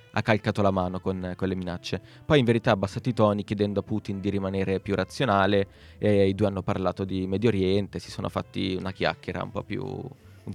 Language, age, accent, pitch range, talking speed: Italian, 20-39, native, 95-115 Hz, 215 wpm